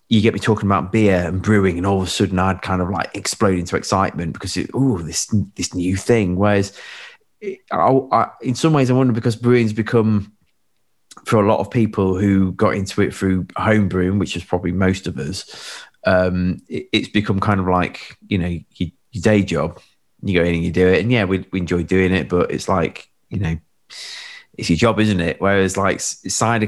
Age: 20-39